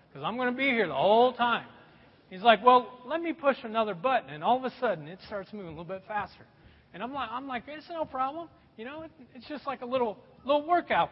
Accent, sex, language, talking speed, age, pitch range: American, male, English, 245 wpm, 40-59, 215-315 Hz